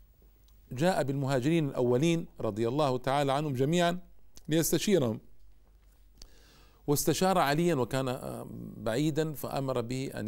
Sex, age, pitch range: male, 50-69, 125-160 Hz